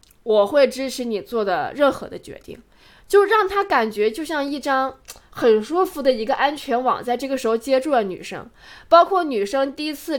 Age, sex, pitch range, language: 20-39, female, 230-295 Hz, Chinese